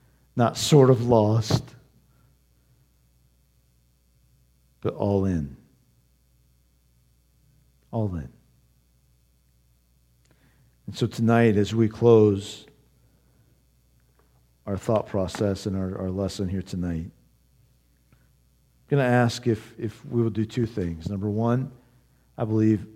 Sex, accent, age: male, American, 50-69